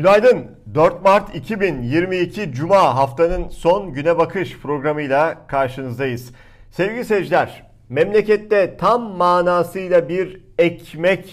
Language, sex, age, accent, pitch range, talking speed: Turkish, male, 50-69, native, 135-195 Hz, 95 wpm